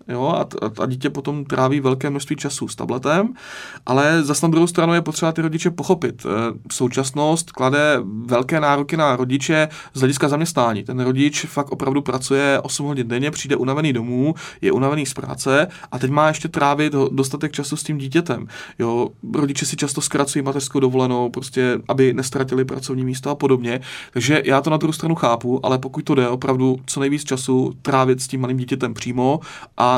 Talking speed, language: 185 wpm, Czech